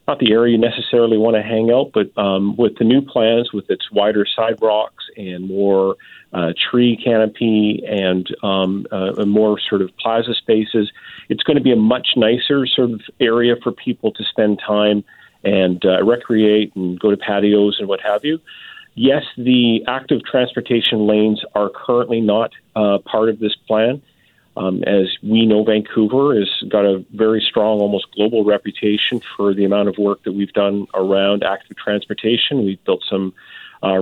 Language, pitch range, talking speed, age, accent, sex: English, 100-115 Hz, 175 wpm, 40-59, American, male